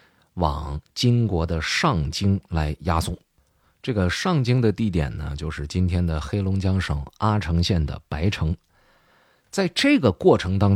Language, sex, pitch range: Chinese, male, 85-135 Hz